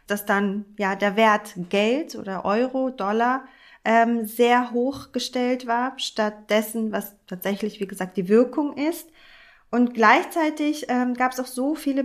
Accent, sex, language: German, female, German